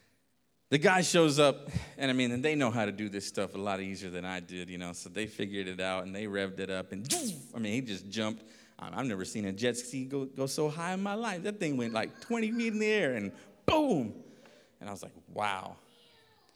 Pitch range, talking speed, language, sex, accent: 95-125 Hz, 255 wpm, English, male, American